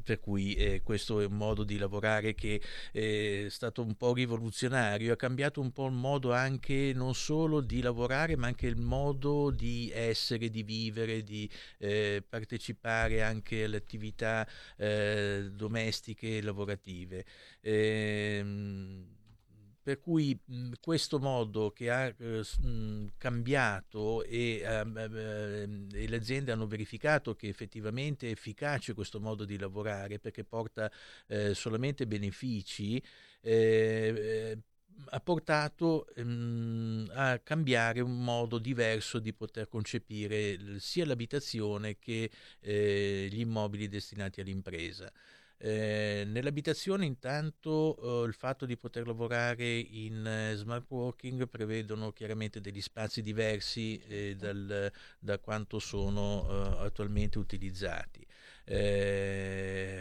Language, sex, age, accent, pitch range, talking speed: Italian, male, 50-69, native, 105-120 Hz, 120 wpm